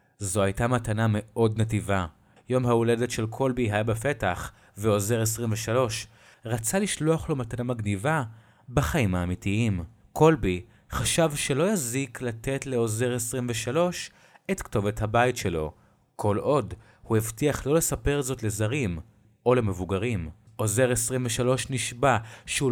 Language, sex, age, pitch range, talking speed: Hebrew, male, 30-49, 105-130 Hz, 120 wpm